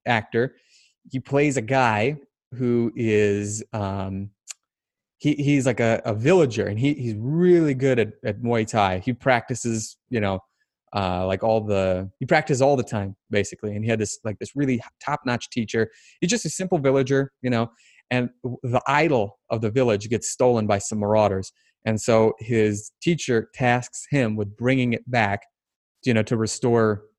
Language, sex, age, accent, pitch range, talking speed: English, male, 30-49, American, 105-130 Hz, 170 wpm